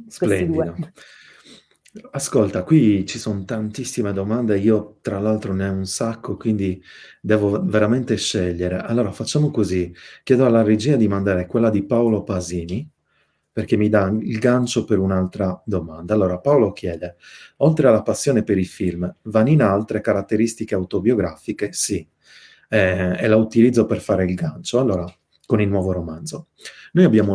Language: Italian